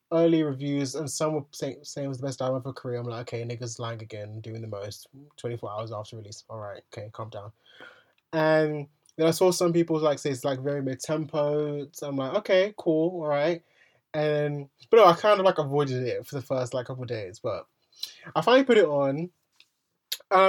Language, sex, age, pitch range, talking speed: English, male, 20-39, 125-155 Hz, 220 wpm